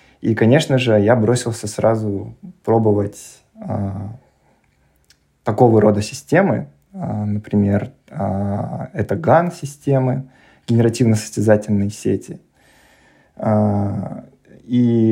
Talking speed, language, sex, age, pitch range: 80 wpm, Russian, male, 20-39, 105-125 Hz